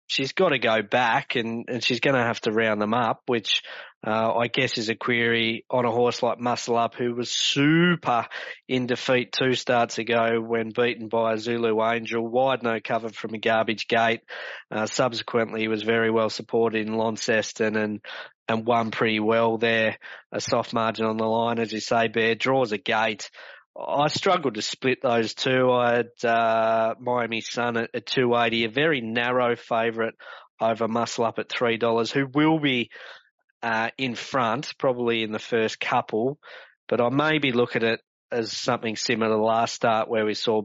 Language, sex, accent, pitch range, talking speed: English, male, Australian, 110-120 Hz, 185 wpm